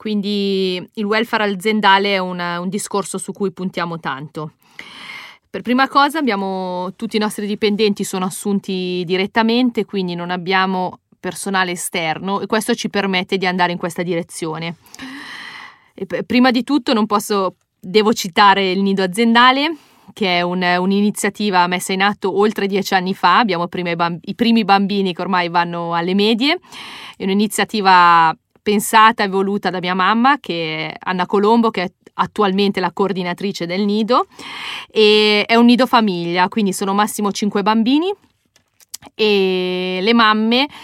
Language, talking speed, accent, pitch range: Italian, 150 wpm, native, 180-215 Hz